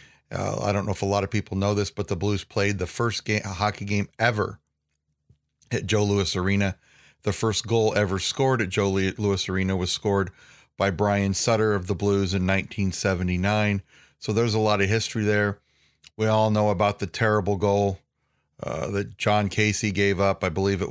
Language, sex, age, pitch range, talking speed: English, male, 40-59, 95-105 Hz, 190 wpm